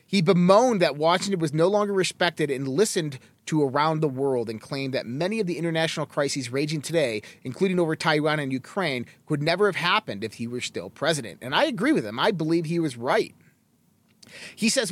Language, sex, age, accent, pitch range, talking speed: English, male, 30-49, American, 150-195 Hz, 200 wpm